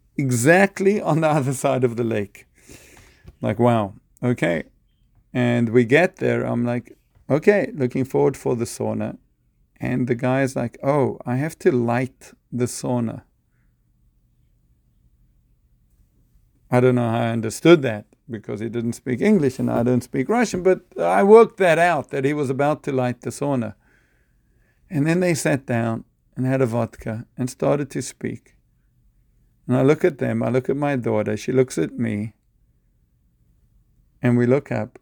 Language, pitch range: English, 115-145 Hz